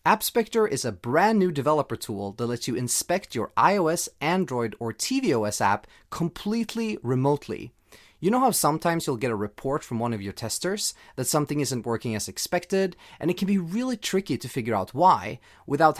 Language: English